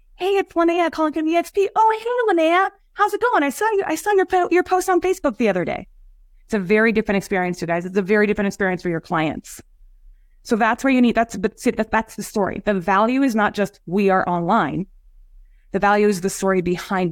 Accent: American